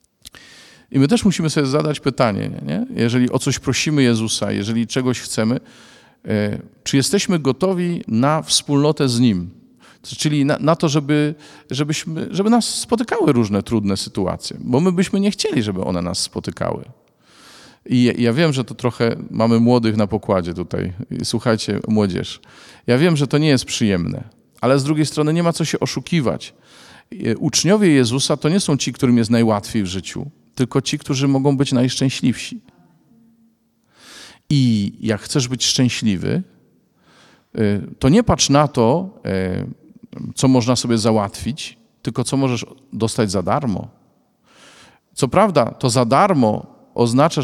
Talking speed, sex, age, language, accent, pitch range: 145 wpm, male, 40-59, Polish, native, 110-150 Hz